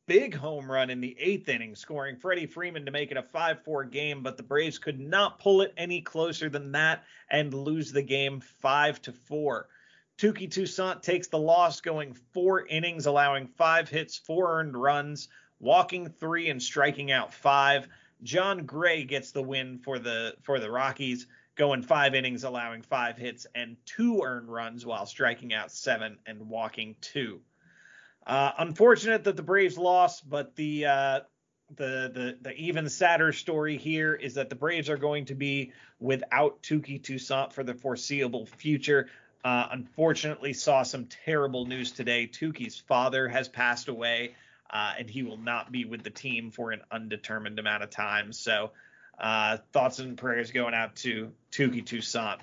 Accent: American